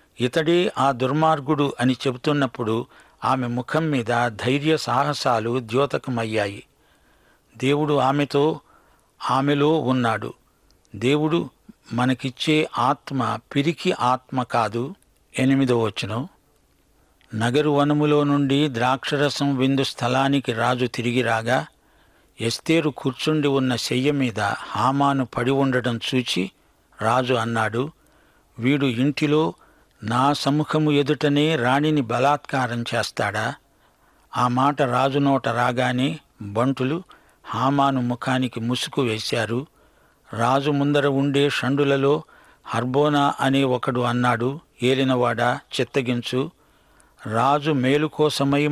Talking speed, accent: 80 wpm, Indian